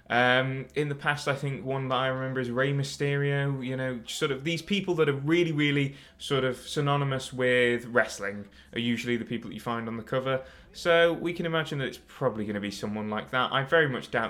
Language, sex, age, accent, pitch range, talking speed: Finnish, male, 20-39, British, 115-150 Hz, 230 wpm